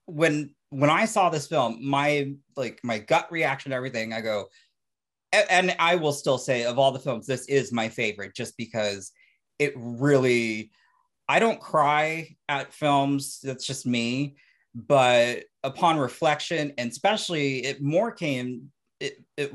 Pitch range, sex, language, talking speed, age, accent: 115-150 Hz, male, English, 155 wpm, 30-49, American